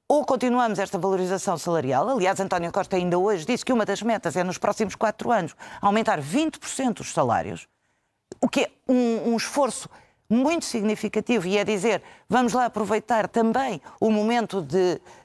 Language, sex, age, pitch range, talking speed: Portuguese, female, 50-69, 185-230 Hz, 165 wpm